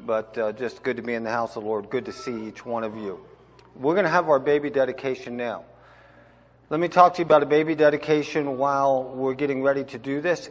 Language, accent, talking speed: English, American, 245 wpm